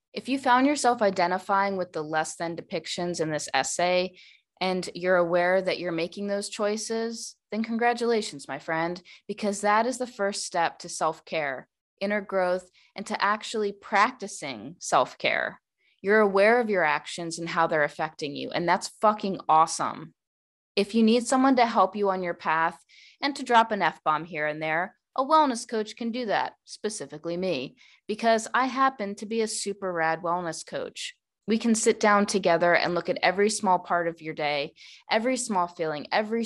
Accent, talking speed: American, 180 wpm